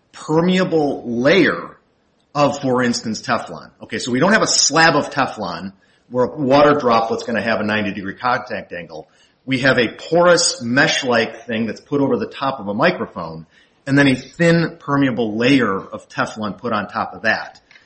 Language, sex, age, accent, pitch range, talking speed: English, male, 40-59, American, 110-145 Hz, 180 wpm